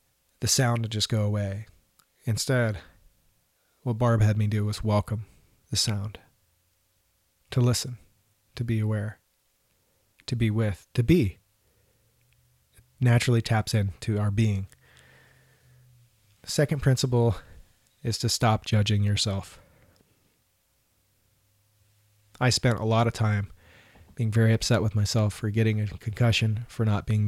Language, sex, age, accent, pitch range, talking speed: English, male, 30-49, American, 100-115 Hz, 130 wpm